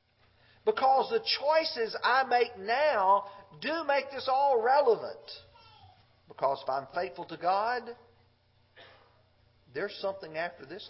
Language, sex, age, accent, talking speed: English, male, 50-69, American, 115 wpm